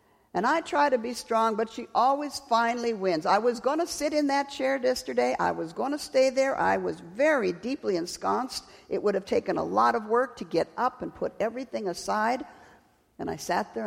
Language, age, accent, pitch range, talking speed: English, 50-69, American, 185-280 Hz, 215 wpm